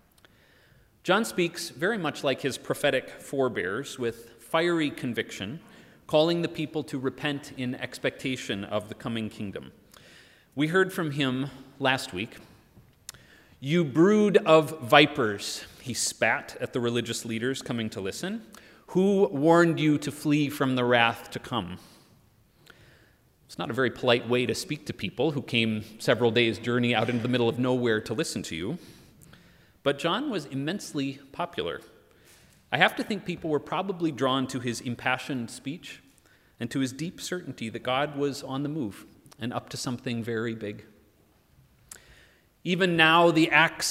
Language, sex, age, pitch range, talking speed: English, male, 30-49, 120-165 Hz, 155 wpm